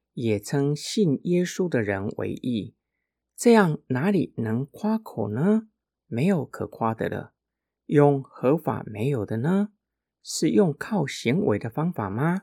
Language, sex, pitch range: Chinese, male, 115-190 Hz